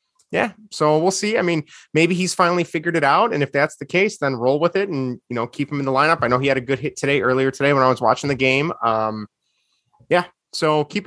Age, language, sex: 30-49, English, male